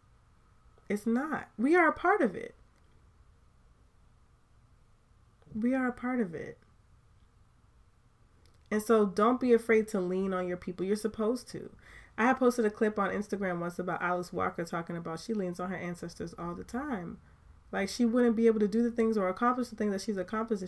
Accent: American